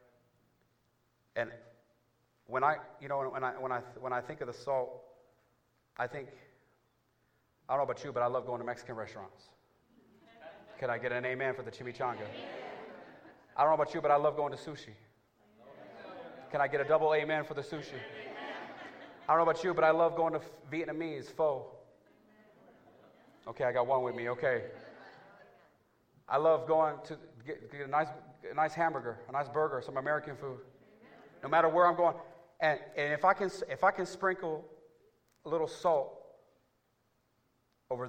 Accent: American